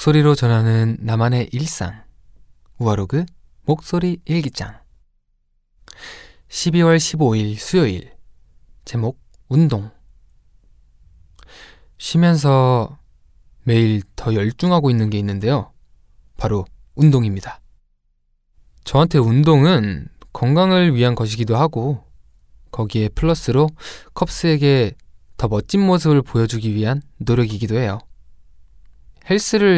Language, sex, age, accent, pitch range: Korean, male, 20-39, native, 105-145 Hz